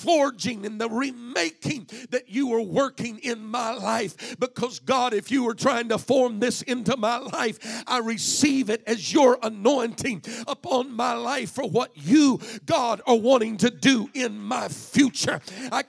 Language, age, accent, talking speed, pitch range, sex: English, 50-69, American, 165 wpm, 230-270 Hz, male